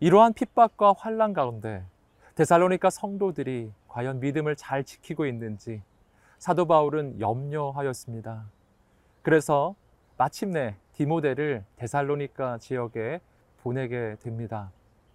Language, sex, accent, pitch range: Korean, male, native, 115-170 Hz